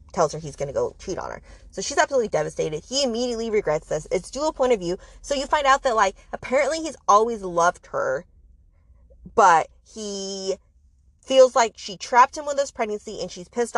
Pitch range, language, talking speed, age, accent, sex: 155-215 Hz, English, 195 wpm, 20-39, American, female